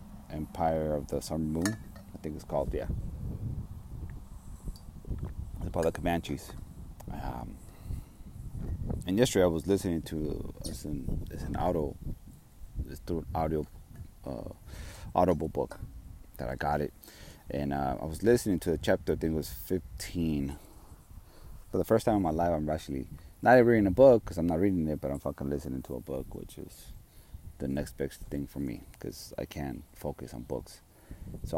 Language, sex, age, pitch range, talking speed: English, male, 30-49, 75-95 Hz, 175 wpm